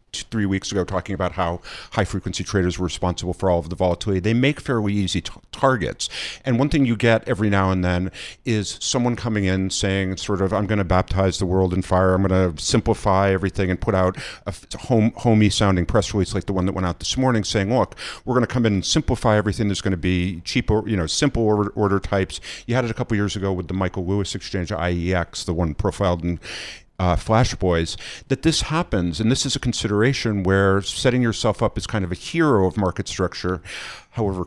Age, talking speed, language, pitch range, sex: 50-69, 220 wpm, English, 90-110 Hz, male